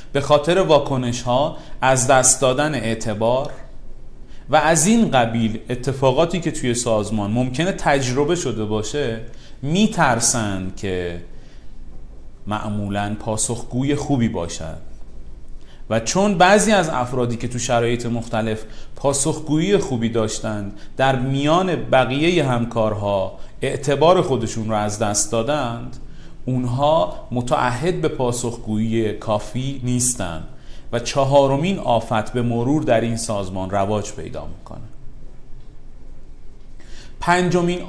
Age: 30-49